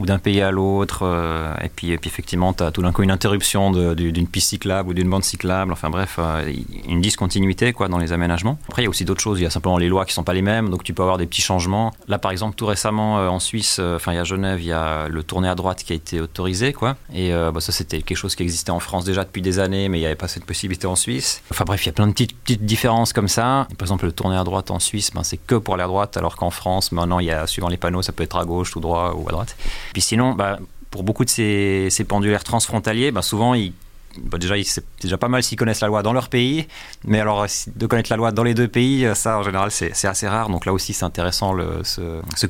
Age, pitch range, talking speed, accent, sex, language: 30-49, 90-105 Hz, 295 wpm, French, male, French